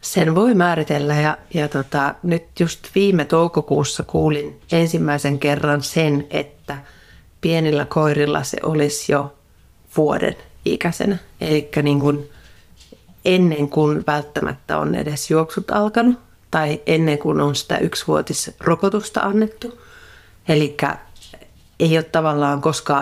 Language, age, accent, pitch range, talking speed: Finnish, 30-49, native, 145-190 Hz, 115 wpm